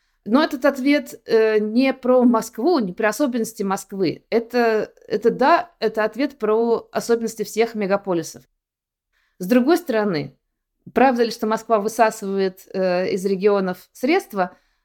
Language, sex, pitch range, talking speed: Russian, female, 185-235 Hz, 130 wpm